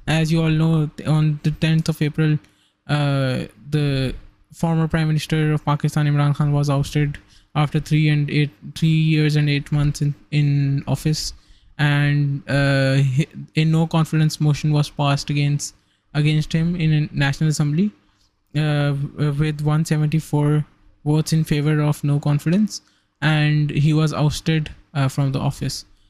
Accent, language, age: Indian, English, 20-39